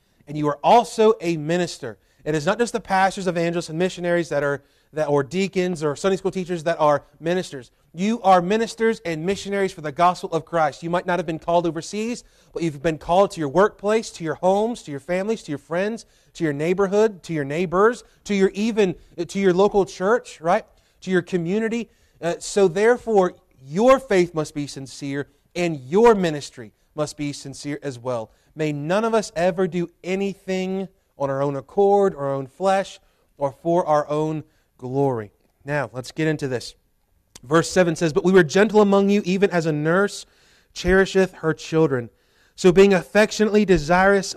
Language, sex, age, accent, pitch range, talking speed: English, male, 30-49, American, 150-195 Hz, 185 wpm